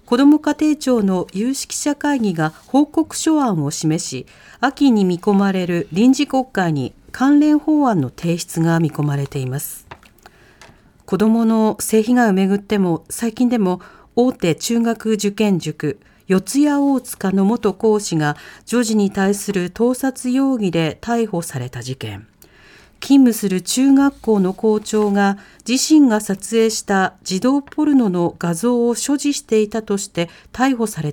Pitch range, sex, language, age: 175-245 Hz, female, Japanese, 50-69